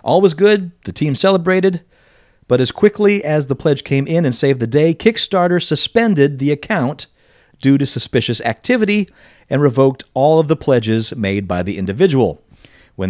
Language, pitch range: English, 100-145 Hz